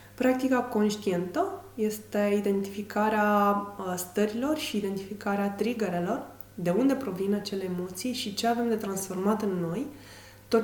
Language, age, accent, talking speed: Romanian, 20-39, native, 120 wpm